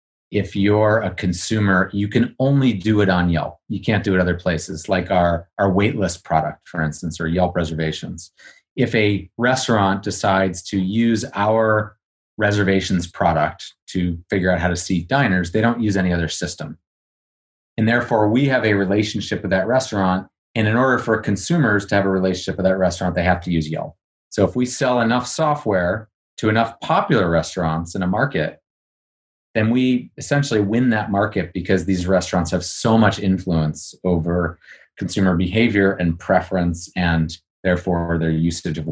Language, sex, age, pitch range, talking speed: English, male, 30-49, 90-110 Hz, 170 wpm